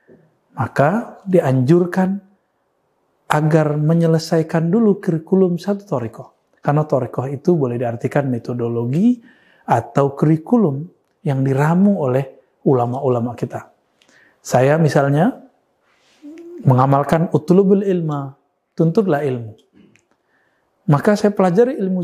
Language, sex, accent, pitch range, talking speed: Indonesian, male, native, 145-195 Hz, 85 wpm